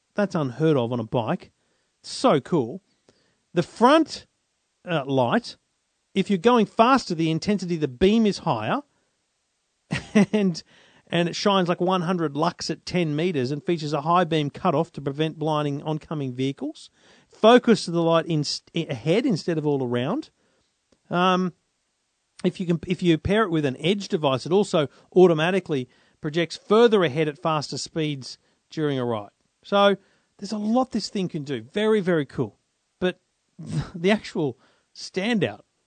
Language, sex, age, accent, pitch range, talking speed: English, male, 40-59, Australian, 155-205 Hz, 155 wpm